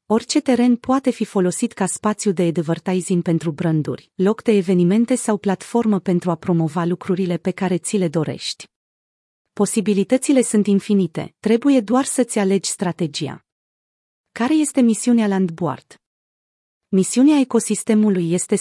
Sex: female